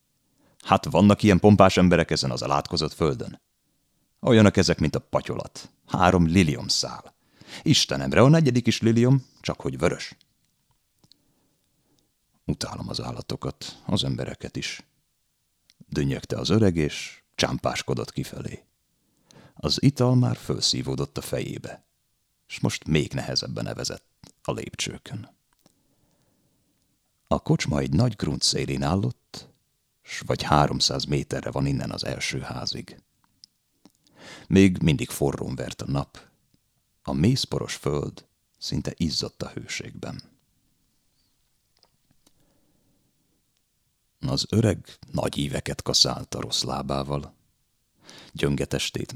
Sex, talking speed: male, 105 wpm